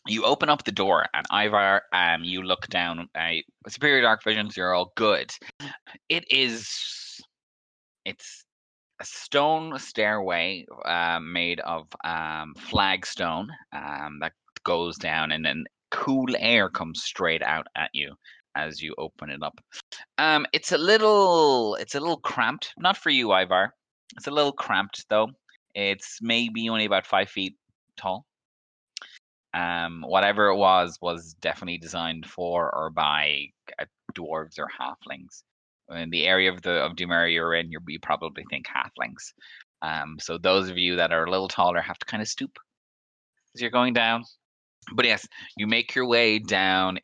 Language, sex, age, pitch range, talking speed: English, male, 20-39, 85-115 Hz, 160 wpm